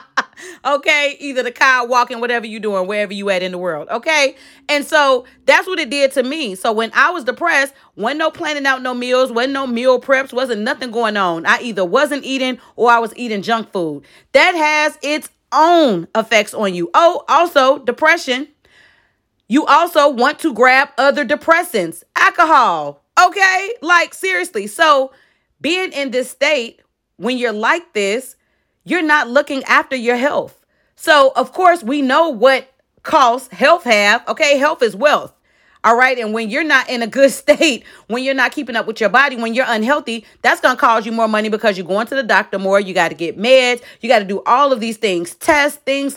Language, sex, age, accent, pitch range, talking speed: English, female, 30-49, American, 220-290 Hz, 195 wpm